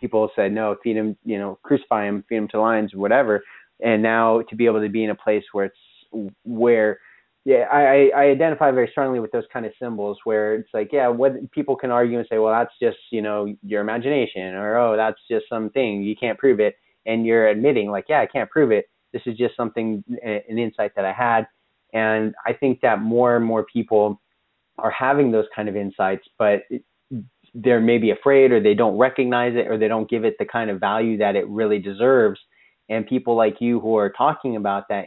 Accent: American